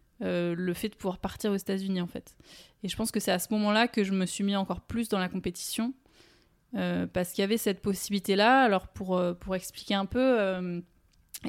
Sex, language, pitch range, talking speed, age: female, French, 185-215 Hz, 225 wpm, 20-39